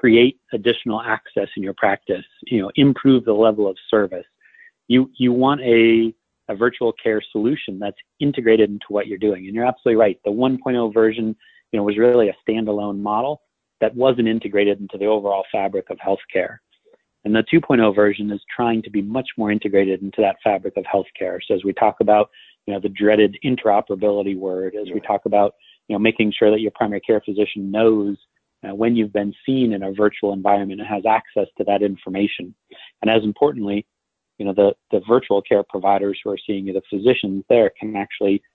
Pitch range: 100-115 Hz